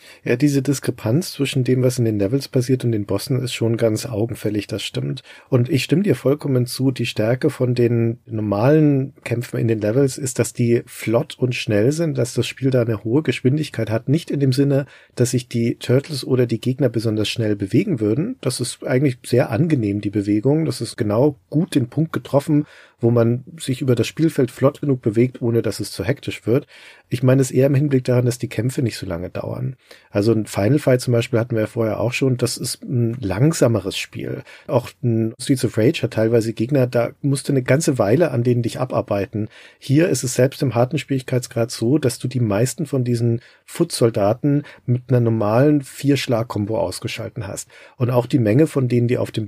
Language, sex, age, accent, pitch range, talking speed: German, male, 40-59, German, 115-135 Hz, 210 wpm